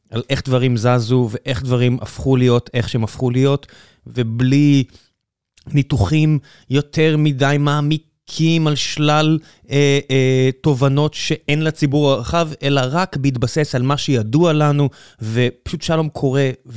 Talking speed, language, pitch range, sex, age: 125 wpm, Hebrew, 125-155 Hz, male, 20-39